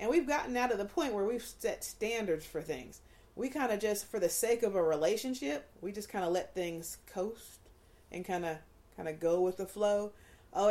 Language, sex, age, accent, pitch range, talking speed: English, female, 40-59, American, 155-210 Hz, 215 wpm